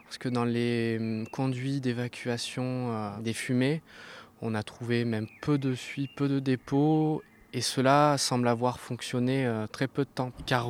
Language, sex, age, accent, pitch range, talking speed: French, male, 20-39, French, 110-130 Hz, 155 wpm